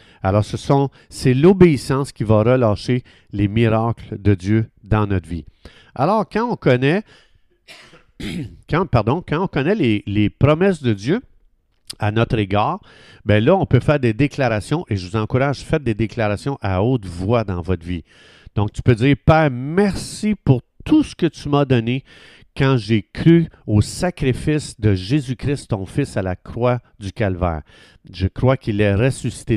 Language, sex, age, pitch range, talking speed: French, male, 50-69, 105-145 Hz, 170 wpm